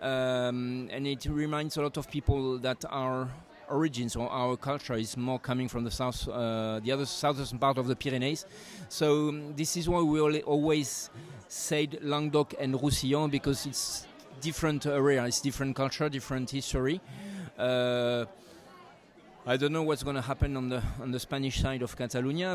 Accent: French